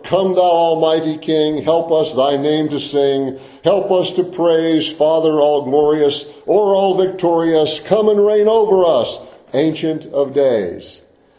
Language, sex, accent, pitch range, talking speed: English, male, American, 130-175 Hz, 150 wpm